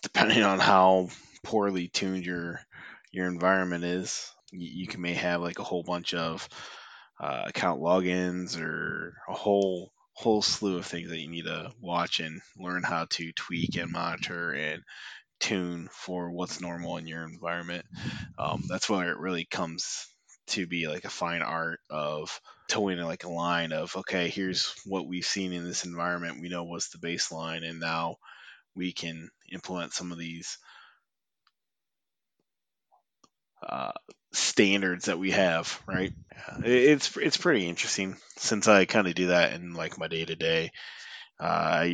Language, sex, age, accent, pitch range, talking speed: English, male, 20-39, American, 85-90 Hz, 155 wpm